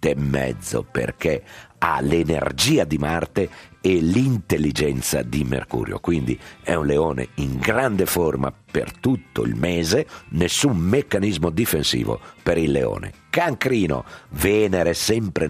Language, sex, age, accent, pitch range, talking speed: Italian, male, 50-69, native, 75-115 Hz, 115 wpm